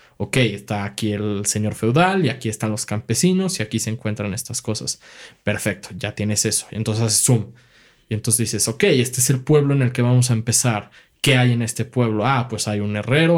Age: 20-39